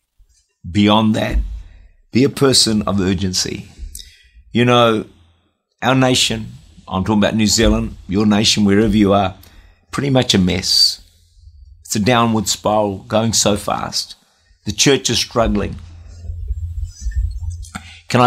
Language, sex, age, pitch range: English, male, 50-69, 85-125 Hz